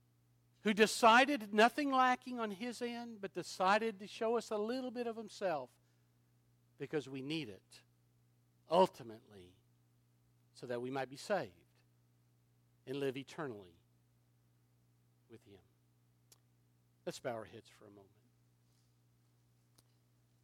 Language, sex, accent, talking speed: English, male, American, 115 wpm